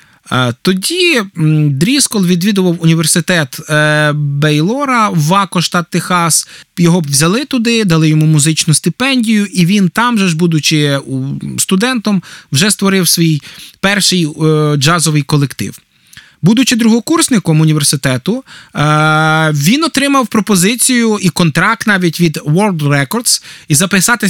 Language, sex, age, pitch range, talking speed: Ukrainian, male, 20-39, 155-205 Hz, 100 wpm